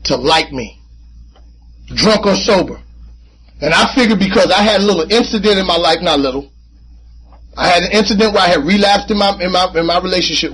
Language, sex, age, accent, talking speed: English, male, 30-49, American, 200 wpm